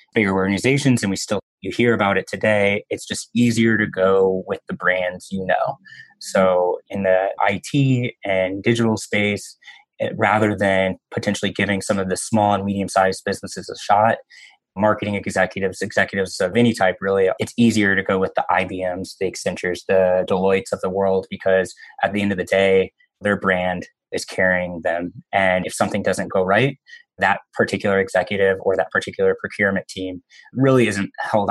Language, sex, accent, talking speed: English, male, American, 175 wpm